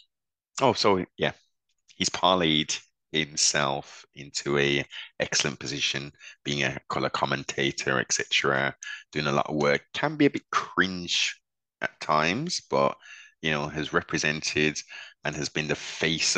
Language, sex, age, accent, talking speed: English, male, 20-39, British, 135 wpm